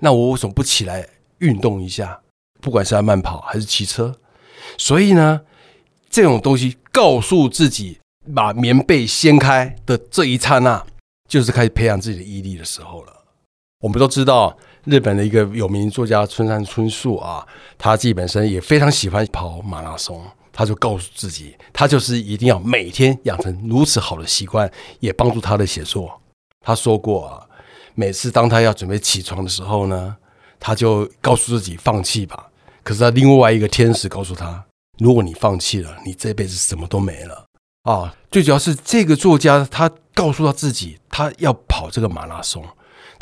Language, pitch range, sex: Chinese, 100-130 Hz, male